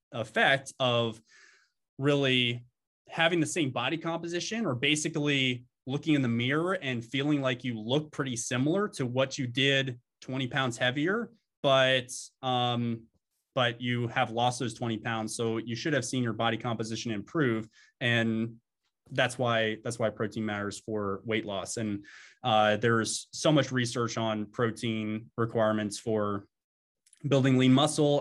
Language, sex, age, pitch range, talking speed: English, male, 20-39, 115-145 Hz, 145 wpm